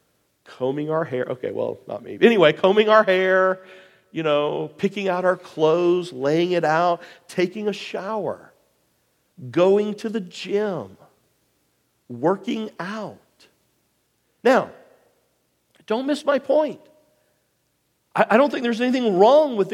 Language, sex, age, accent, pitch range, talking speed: English, male, 50-69, American, 170-275 Hz, 125 wpm